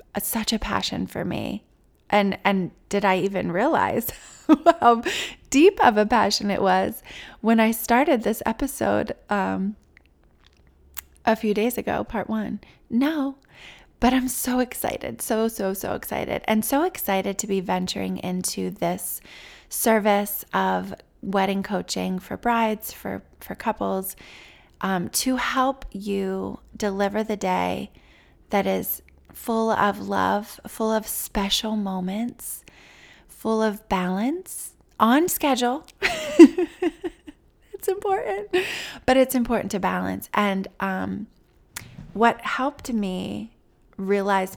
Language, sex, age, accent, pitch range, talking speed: English, female, 20-39, American, 180-240 Hz, 125 wpm